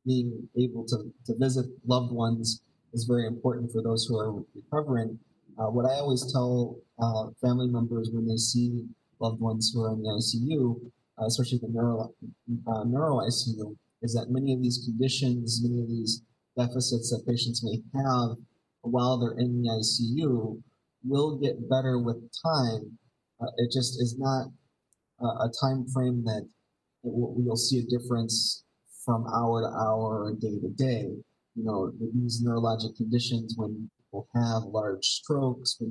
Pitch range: 115-125 Hz